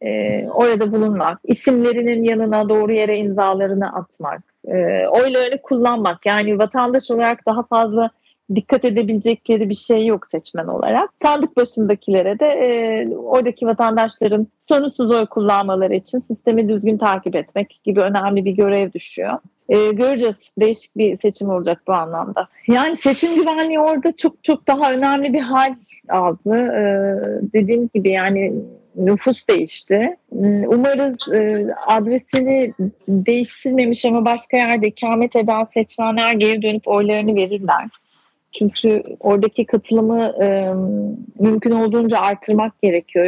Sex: female